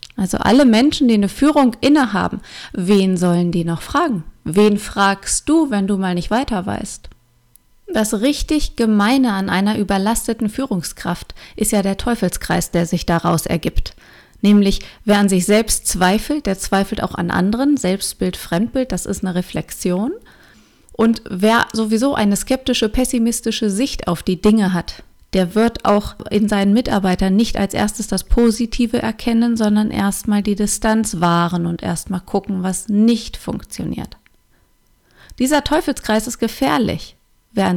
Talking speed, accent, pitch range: 145 wpm, German, 190-230 Hz